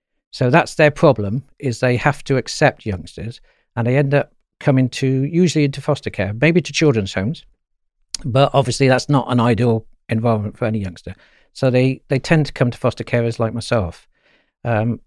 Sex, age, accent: male, 60-79, British